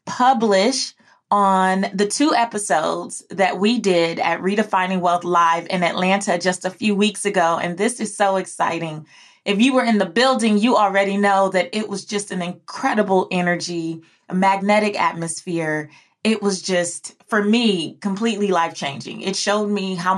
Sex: female